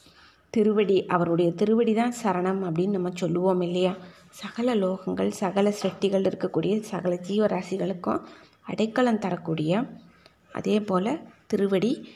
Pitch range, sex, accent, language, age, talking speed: 185-220 Hz, female, native, Tamil, 20-39, 105 wpm